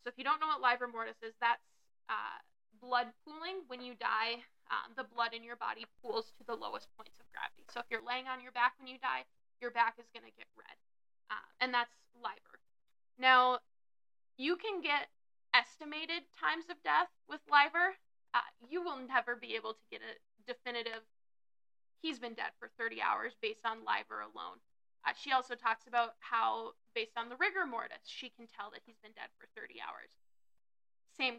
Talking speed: 195 wpm